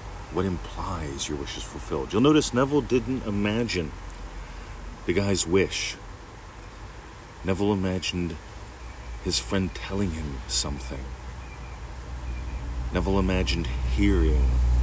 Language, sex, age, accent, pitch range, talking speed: English, male, 40-59, American, 80-110 Hz, 95 wpm